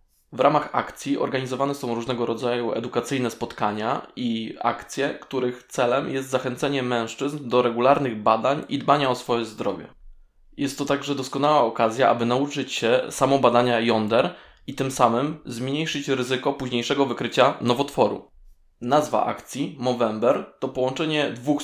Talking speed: 135 wpm